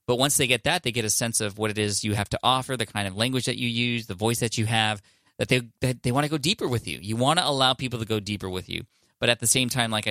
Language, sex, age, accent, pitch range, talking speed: English, male, 20-39, American, 105-130 Hz, 325 wpm